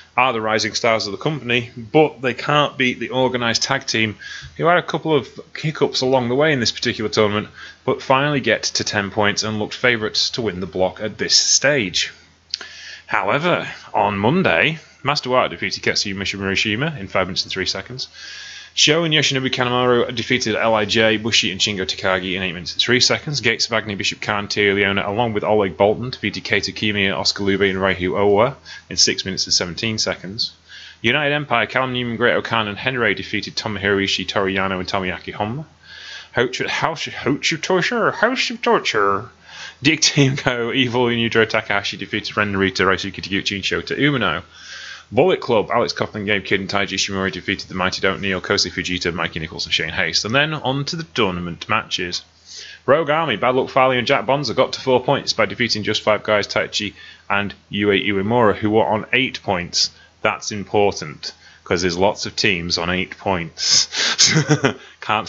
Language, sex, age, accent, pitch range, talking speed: English, male, 20-39, British, 95-125 Hz, 180 wpm